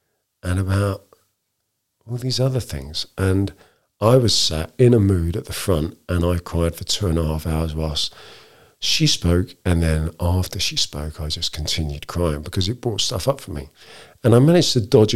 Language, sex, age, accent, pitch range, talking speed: English, male, 50-69, British, 90-130 Hz, 195 wpm